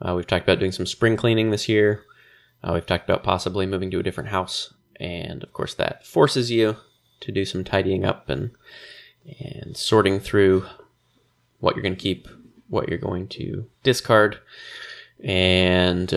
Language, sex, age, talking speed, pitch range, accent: English, male, 20-39, 170 wpm, 95-120 Hz, American